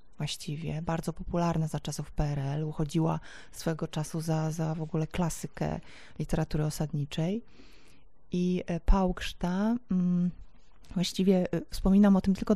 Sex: female